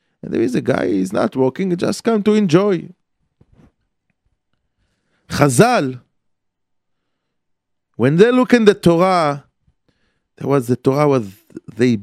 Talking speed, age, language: 125 wpm, 40-59, English